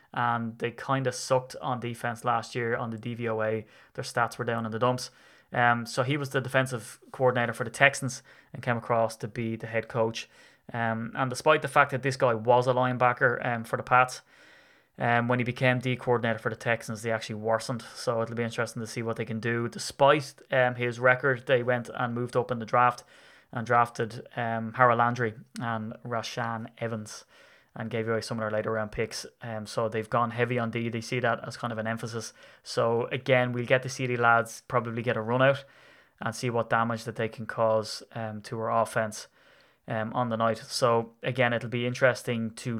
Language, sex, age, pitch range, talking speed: English, male, 20-39, 115-130 Hz, 220 wpm